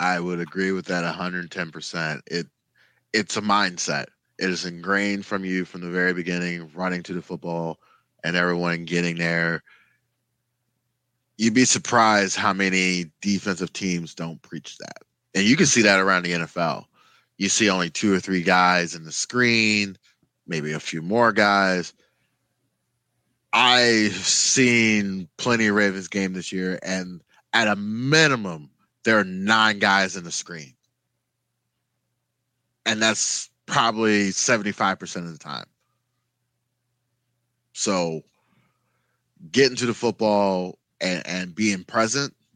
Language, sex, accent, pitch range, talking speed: English, male, American, 90-115 Hz, 135 wpm